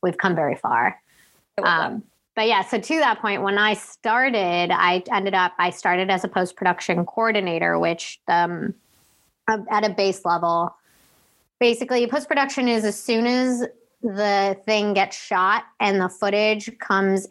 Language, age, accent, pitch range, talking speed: English, 20-39, American, 170-210 Hz, 155 wpm